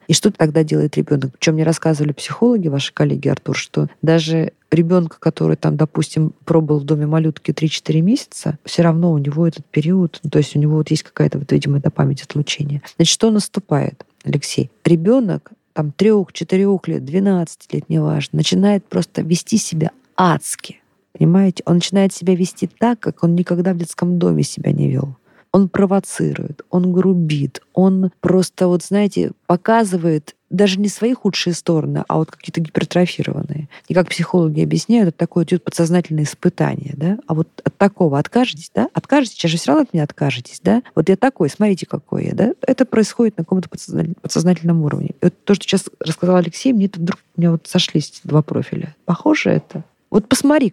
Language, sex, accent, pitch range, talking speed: Russian, female, native, 155-190 Hz, 175 wpm